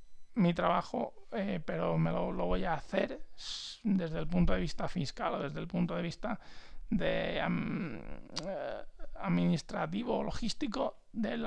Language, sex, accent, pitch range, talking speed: Spanish, male, Spanish, 145-195 Hz, 140 wpm